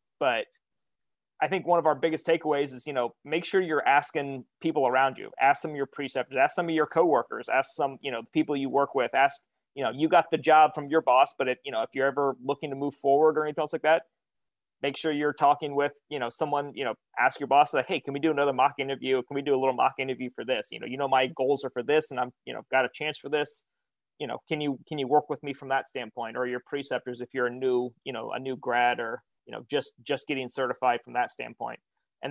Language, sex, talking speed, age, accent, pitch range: English, male, 270 wpm, 30-49, American, 135-155 Hz